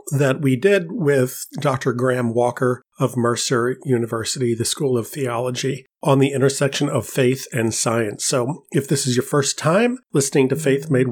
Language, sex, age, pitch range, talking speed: English, male, 40-59, 120-140 Hz, 175 wpm